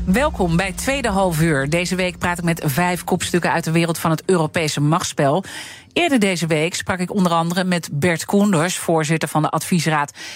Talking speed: 190 wpm